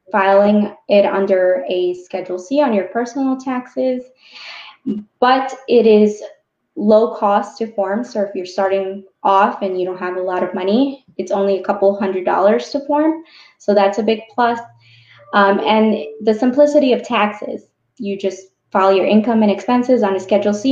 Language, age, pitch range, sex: English, 20-39, 195-245 Hz, female